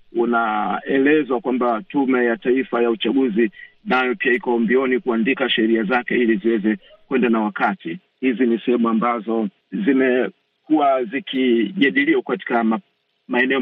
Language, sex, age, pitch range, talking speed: Swahili, male, 50-69, 110-135 Hz, 115 wpm